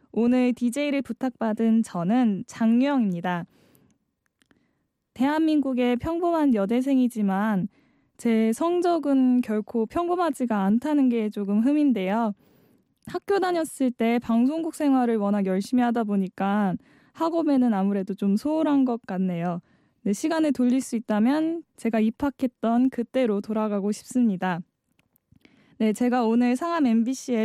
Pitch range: 210-265 Hz